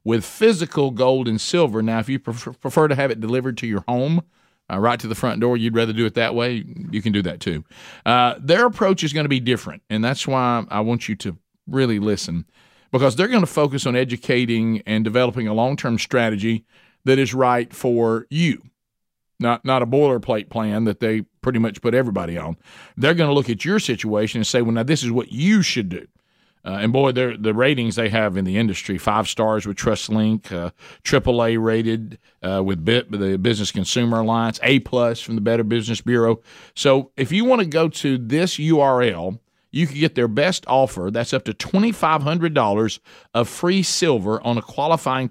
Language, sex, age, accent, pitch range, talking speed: English, male, 50-69, American, 110-140 Hz, 205 wpm